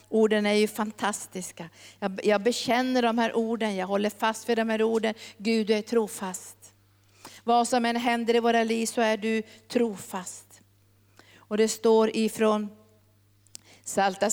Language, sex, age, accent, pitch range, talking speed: Swedish, female, 50-69, native, 205-260 Hz, 150 wpm